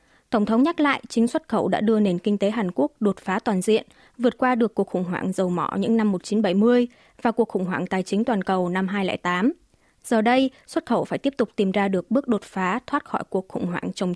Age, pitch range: 20-39, 195-250 Hz